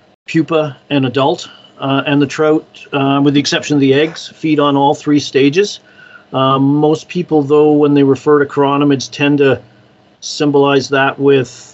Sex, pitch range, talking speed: male, 130-150 Hz, 170 wpm